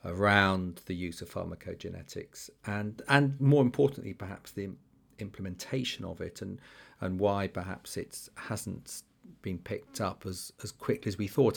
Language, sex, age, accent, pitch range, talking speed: English, male, 40-59, British, 95-110 Hz, 150 wpm